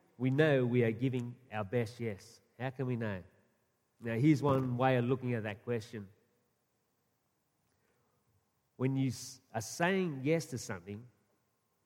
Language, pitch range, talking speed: English, 110-135 Hz, 140 wpm